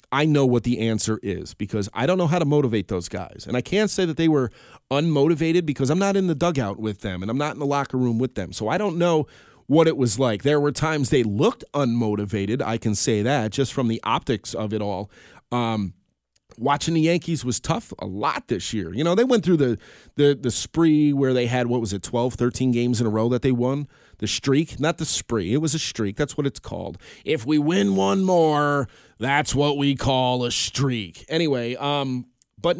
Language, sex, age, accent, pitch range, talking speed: English, male, 30-49, American, 115-160 Hz, 230 wpm